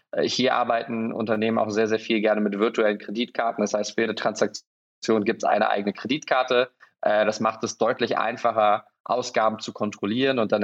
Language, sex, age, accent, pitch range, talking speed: German, male, 20-39, German, 105-125 Hz, 175 wpm